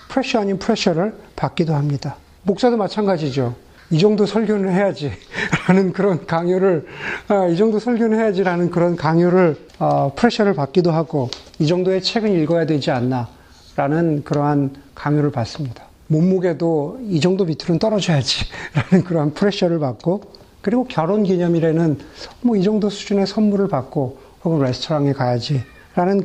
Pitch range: 160-220 Hz